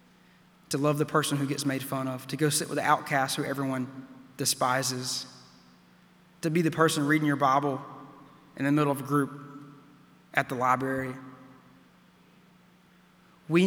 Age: 20-39